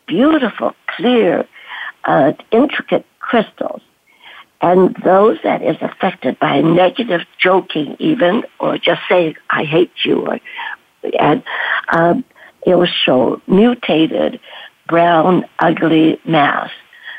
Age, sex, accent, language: 60-79, female, American, English